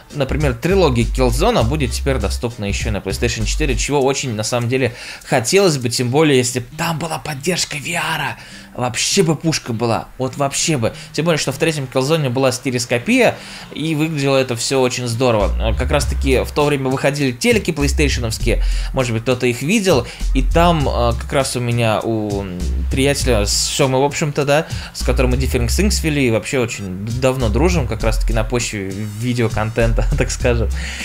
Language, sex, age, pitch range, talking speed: Russian, male, 20-39, 120-165 Hz, 170 wpm